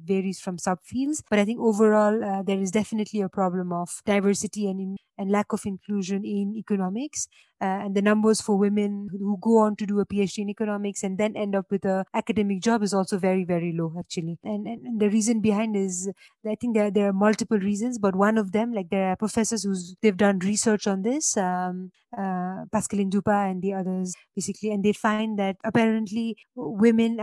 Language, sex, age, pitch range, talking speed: English, female, 20-39, 195-220 Hz, 205 wpm